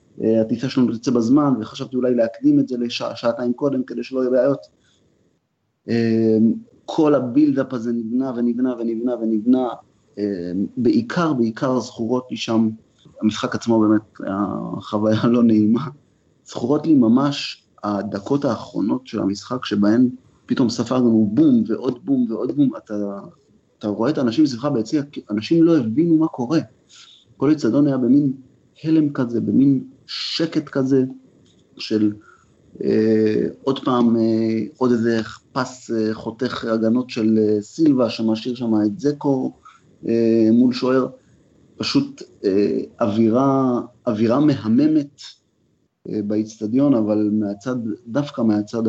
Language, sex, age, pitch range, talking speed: Hebrew, male, 30-49, 105-130 Hz, 125 wpm